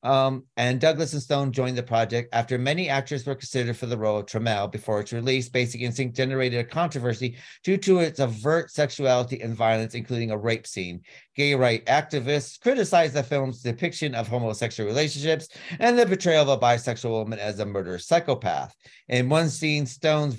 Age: 40-59